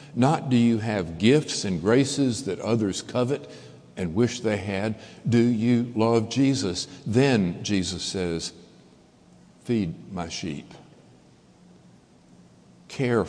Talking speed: 115 wpm